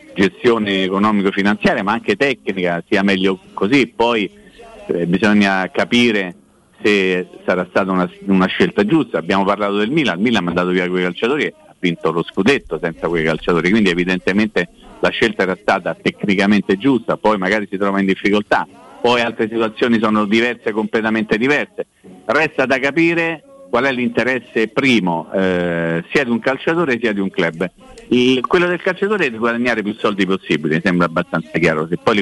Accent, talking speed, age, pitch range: native, 175 wpm, 50-69, 100-120 Hz